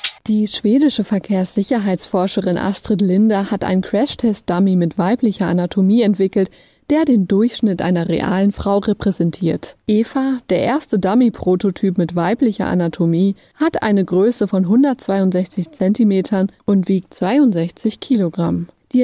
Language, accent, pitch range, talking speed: German, German, 180-225 Hz, 120 wpm